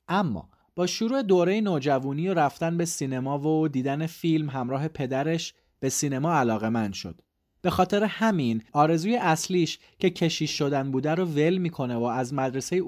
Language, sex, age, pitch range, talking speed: Persian, male, 30-49, 130-175 Hz, 160 wpm